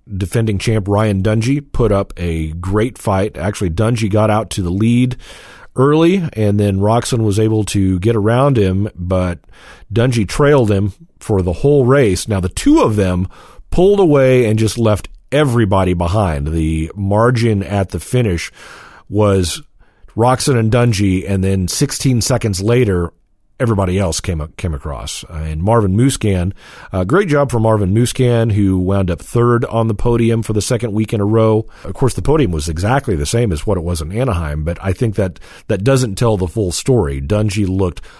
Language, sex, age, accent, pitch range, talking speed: English, male, 40-59, American, 90-120 Hz, 185 wpm